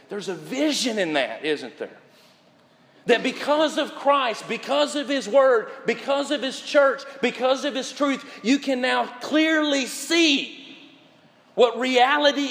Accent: American